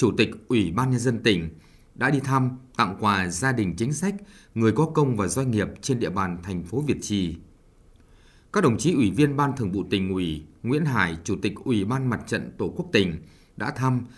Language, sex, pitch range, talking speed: Vietnamese, male, 100-135 Hz, 220 wpm